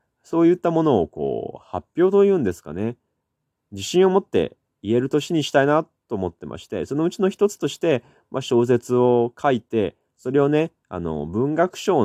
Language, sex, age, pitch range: Japanese, male, 20-39, 95-145 Hz